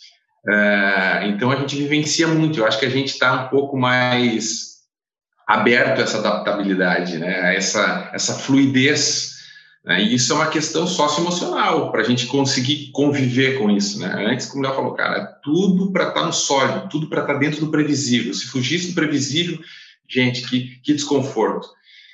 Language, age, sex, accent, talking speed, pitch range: Portuguese, 40-59, male, Brazilian, 170 wpm, 120-150 Hz